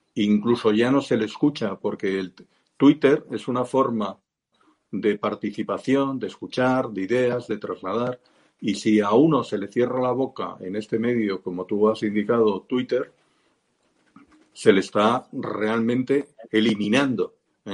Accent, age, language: Spanish, 50-69, Spanish